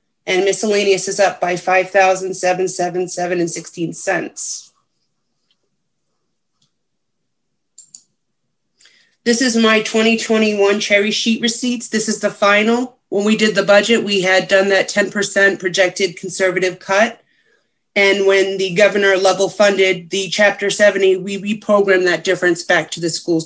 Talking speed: 130 wpm